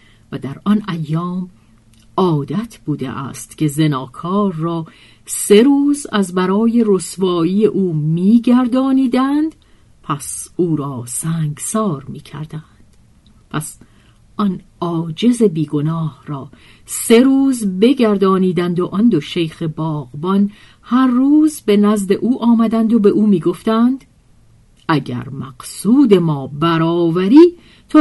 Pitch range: 140-200 Hz